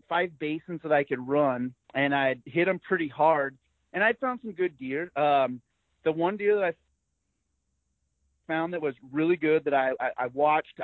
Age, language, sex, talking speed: 30-49, English, male, 185 wpm